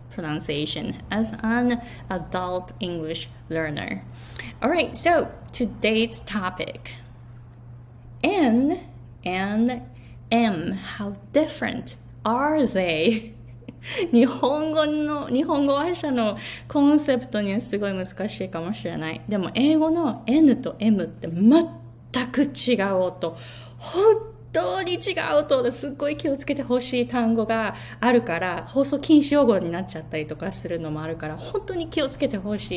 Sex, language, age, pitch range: female, Japanese, 20-39, 165-255 Hz